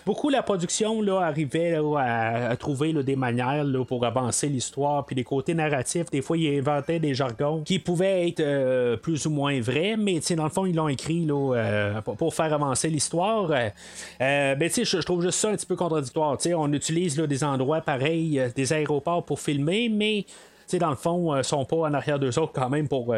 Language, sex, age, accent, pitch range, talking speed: French, male, 30-49, Canadian, 135-180 Hz, 210 wpm